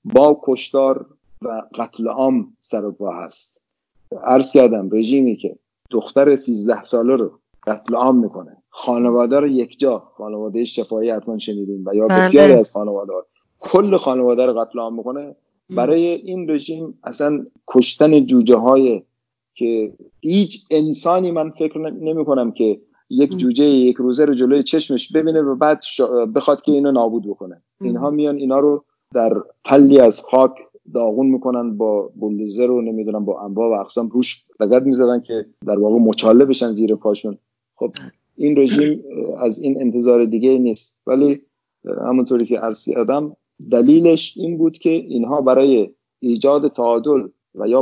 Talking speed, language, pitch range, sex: 145 wpm, English, 115-145 Hz, male